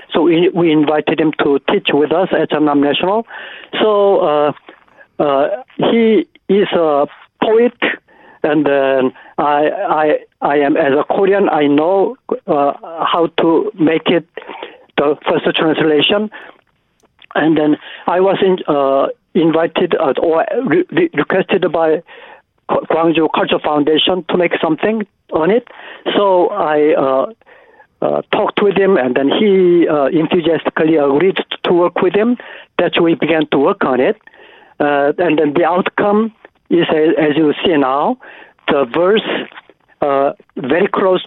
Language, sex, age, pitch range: Korean, male, 60-79, 150-200 Hz